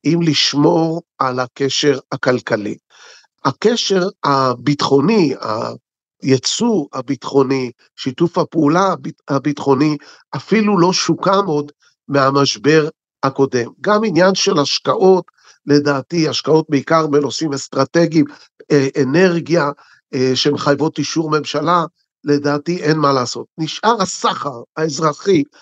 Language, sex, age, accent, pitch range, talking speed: Hebrew, male, 50-69, native, 140-175 Hz, 90 wpm